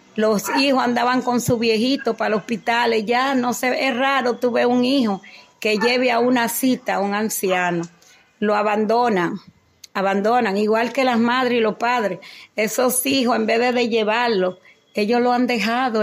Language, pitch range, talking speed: Spanish, 205-240 Hz, 170 wpm